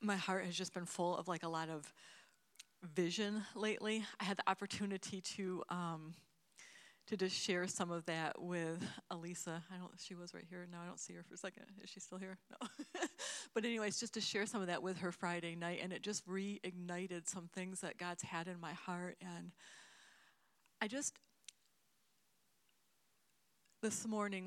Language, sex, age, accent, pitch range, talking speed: English, female, 40-59, American, 175-205 Hz, 185 wpm